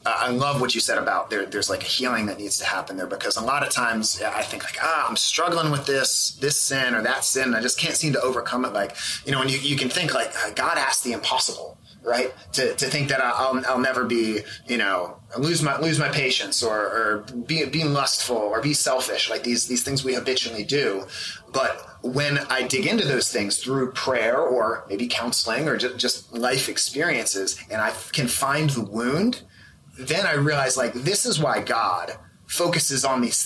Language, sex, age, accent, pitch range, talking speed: English, male, 30-49, American, 125-155 Hz, 215 wpm